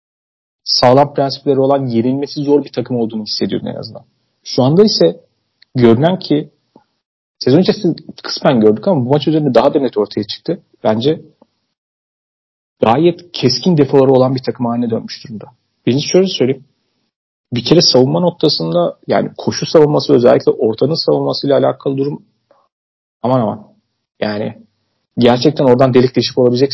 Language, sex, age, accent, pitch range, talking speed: Turkish, male, 40-59, native, 120-145 Hz, 135 wpm